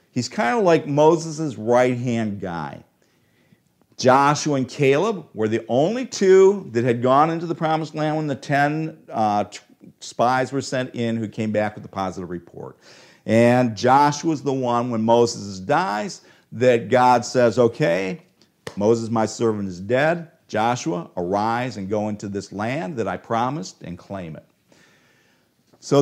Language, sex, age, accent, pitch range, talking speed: English, male, 50-69, American, 110-150 Hz, 150 wpm